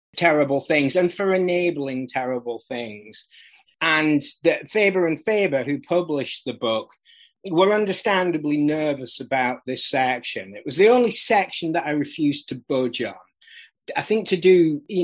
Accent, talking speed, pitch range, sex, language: British, 150 wpm, 130-175 Hz, male, English